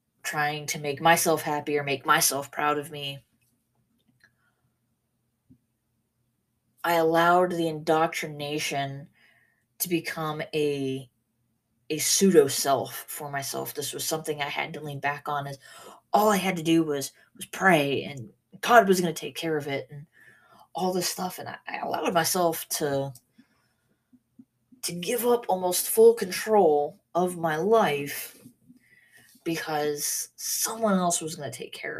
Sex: female